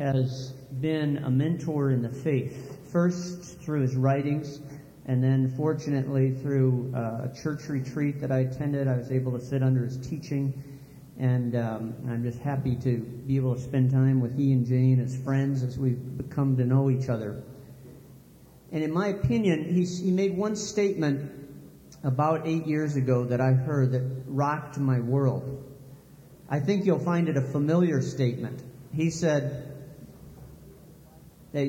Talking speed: 160 wpm